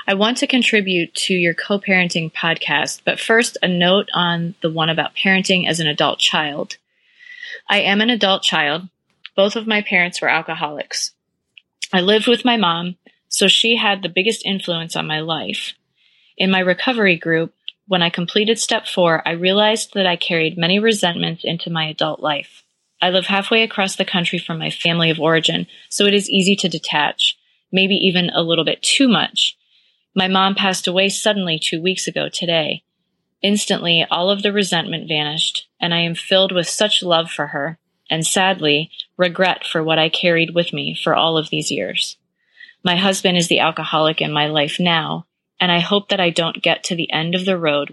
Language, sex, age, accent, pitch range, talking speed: English, female, 20-39, American, 165-195 Hz, 190 wpm